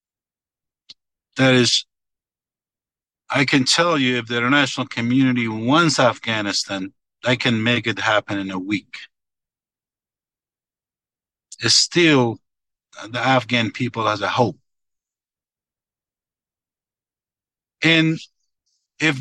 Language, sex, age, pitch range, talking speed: English, male, 60-79, 120-155 Hz, 95 wpm